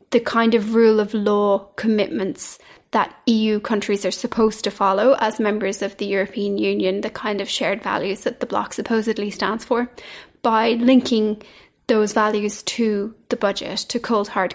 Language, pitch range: English, 205-230 Hz